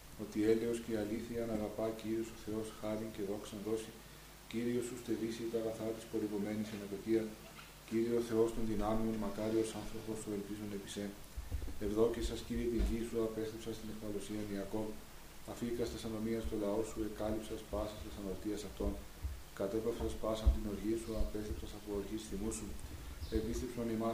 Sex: male